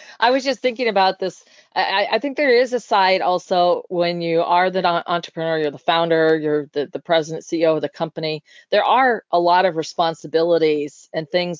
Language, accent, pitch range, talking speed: English, American, 165-205 Hz, 195 wpm